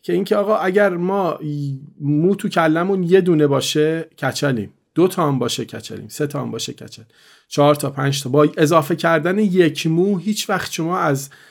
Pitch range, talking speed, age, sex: 140-175 Hz, 190 wpm, 40-59, male